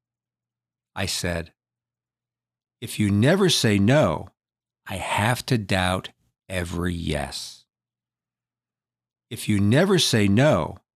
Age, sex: 50-69, male